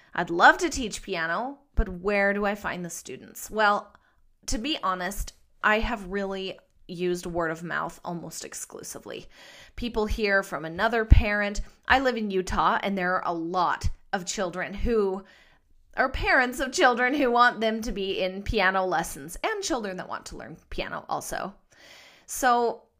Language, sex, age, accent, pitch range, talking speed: English, female, 30-49, American, 190-240 Hz, 165 wpm